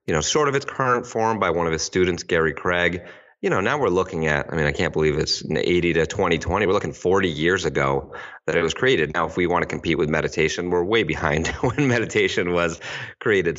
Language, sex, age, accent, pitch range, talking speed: English, male, 30-49, American, 80-90 Hz, 235 wpm